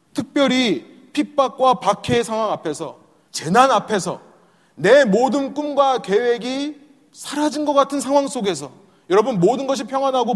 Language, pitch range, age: Korean, 175-275 Hz, 30-49